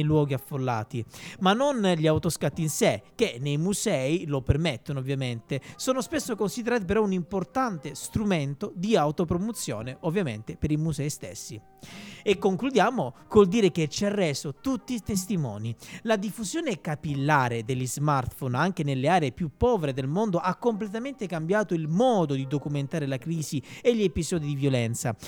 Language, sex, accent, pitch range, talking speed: Italian, male, native, 140-205 Hz, 155 wpm